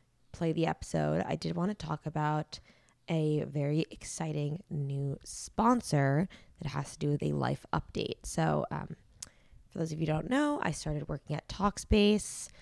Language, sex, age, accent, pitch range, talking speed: English, female, 20-39, American, 145-175 Hz, 170 wpm